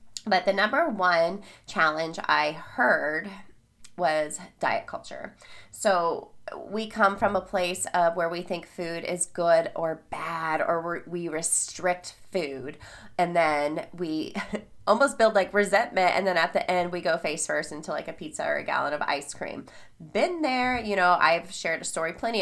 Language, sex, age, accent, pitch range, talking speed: English, female, 20-39, American, 155-195 Hz, 170 wpm